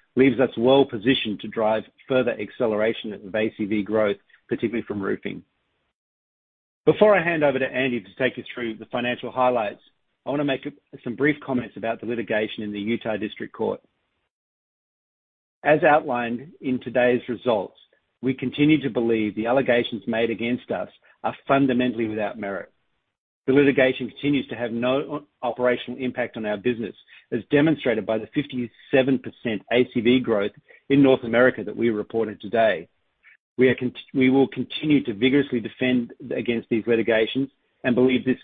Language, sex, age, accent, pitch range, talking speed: English, male, 50-69, Australian, 115-130 Hz, 155 wpm